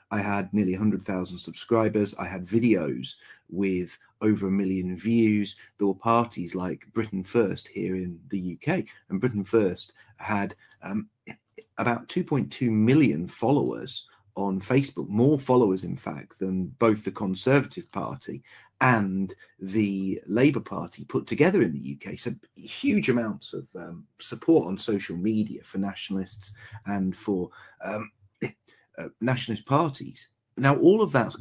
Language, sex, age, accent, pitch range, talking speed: English, male, 30-49, British, 95-120 Hz, 140 wpm